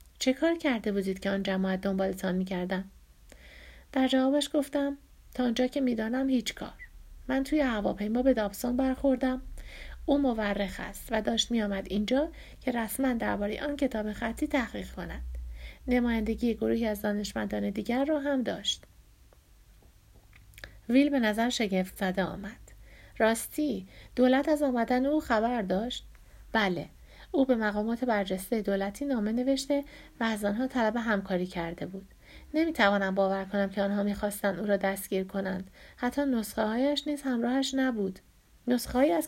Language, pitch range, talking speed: Persian, 195-260 Hz, 145 wpm